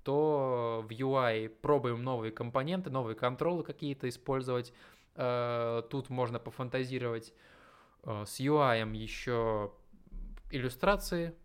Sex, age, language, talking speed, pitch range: male, 20-39, Russian, 90 wpm, 120-145 Hz